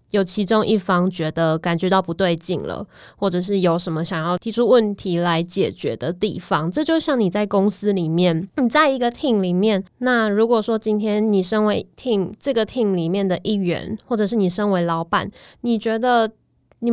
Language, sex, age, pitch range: Chinese, female, 20-39, 175-215 Hz